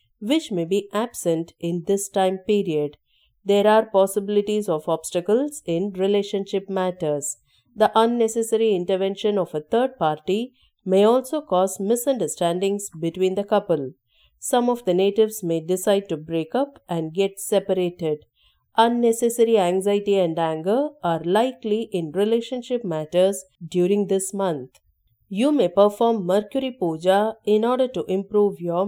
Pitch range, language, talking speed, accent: 170-220 Hz, English, 135 wpm, Indian